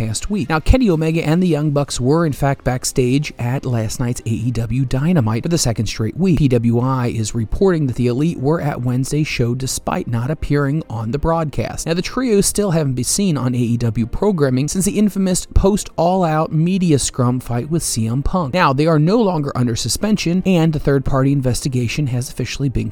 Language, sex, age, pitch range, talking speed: English, male, 30-49, 120-165 Hz, 190 wpm